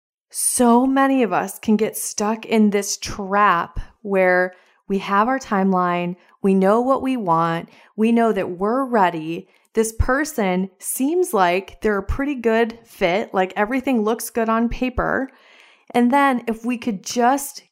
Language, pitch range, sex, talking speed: English, 180-230 Hz, female, 155 wpm